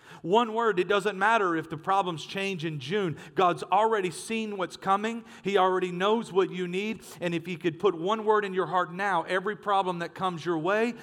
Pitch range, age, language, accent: 145-180 Hz, 40-59, English, American